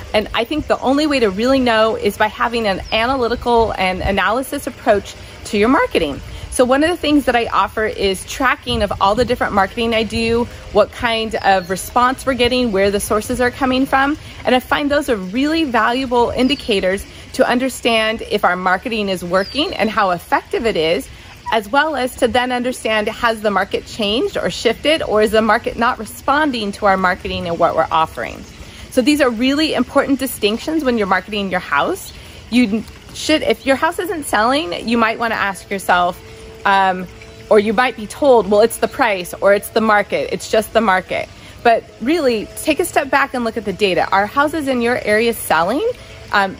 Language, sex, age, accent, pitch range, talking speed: English, female, 30-49, American, 200-255 Hz, 200 wpm